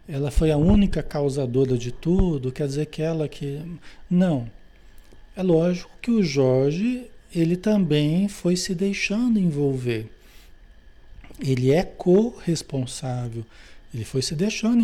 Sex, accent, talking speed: male, Brazilian, 125 wpm